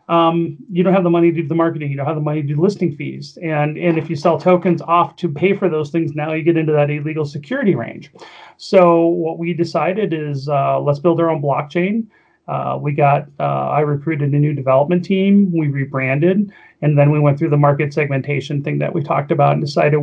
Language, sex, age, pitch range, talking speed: English, male, 30-49, 145-175 Hz, 230 wpm